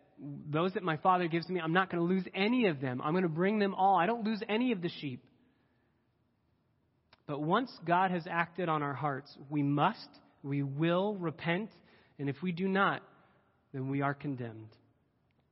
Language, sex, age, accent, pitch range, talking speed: English, male, 30-49, American, 125-175 Hz, 195 wpm